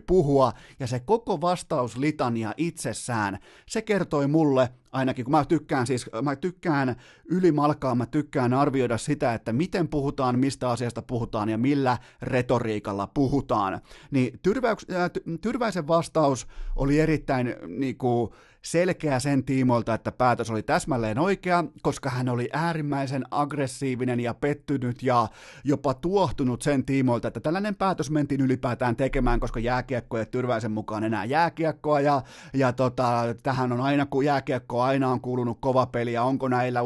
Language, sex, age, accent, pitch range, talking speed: Finnish, male, 30-49, native, 125-165 Hz, 140 wpm